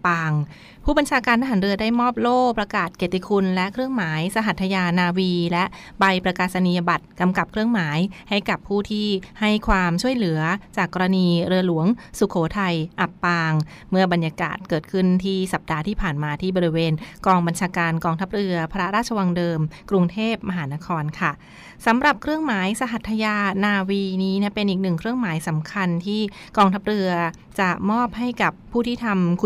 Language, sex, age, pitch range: Thai, female, 30-49, 170-205 Hz